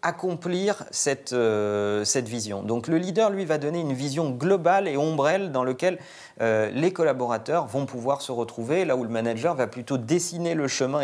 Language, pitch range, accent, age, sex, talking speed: French, 120-175 Hz, French, 40-59, male, 185 wpm